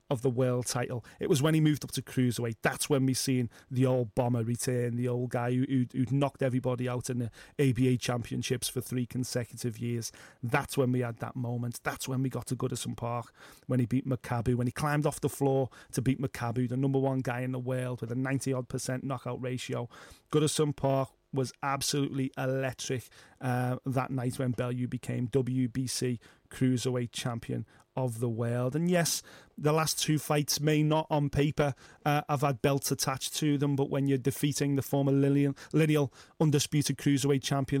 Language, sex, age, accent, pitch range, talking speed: English, male, 30-49, British, 125-145 Hz, 190 wpm